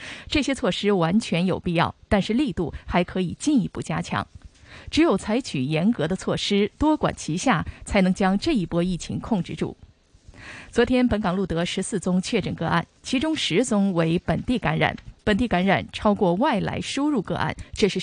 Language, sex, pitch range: Chinese, female, 175-230 Hz